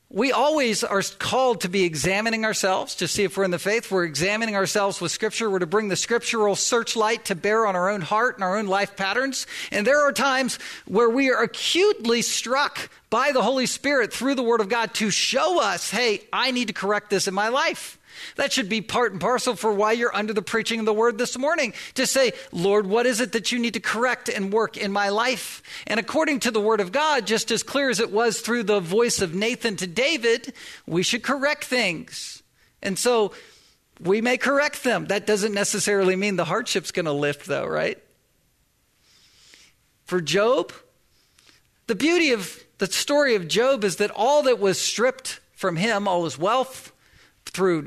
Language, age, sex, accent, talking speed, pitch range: English, 50-69, male, American, 205 wpm, 195-250 Hz